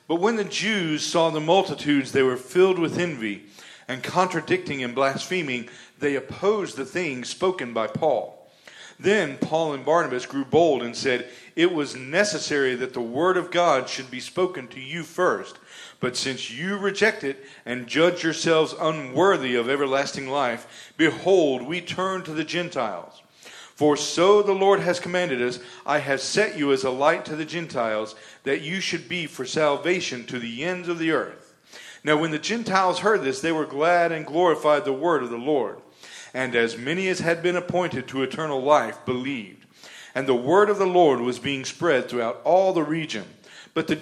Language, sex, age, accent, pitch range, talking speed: English, male, 40-59, American, 130-180 Hz, 185 wpm